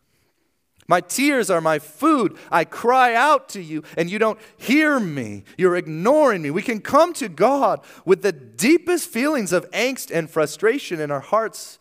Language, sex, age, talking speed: English, male, 30-49, 175 wpm